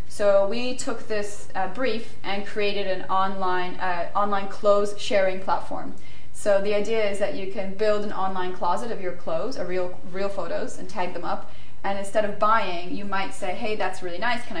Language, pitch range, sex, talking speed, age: English, 180-210 Hz, female, 195 wpm, 30-49